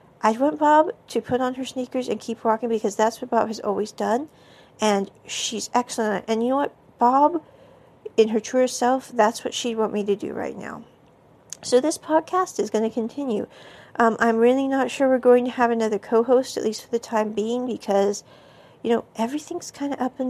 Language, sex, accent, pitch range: English, female, American, 220-265 Hz